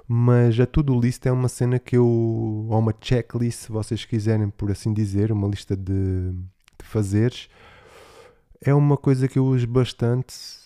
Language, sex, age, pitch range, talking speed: Portuguese, male, 20-39, 100-120 Hz, 165 wpm